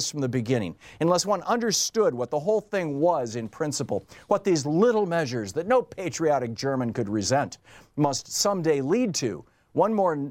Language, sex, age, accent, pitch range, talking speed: English, male, 50-69, American, 125-205 Hz, 170 wpm